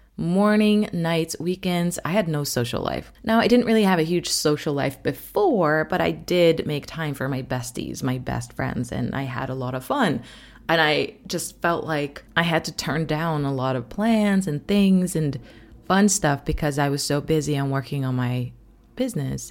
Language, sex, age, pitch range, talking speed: English, female, 20-39, 140-185 Hz, 200 wpm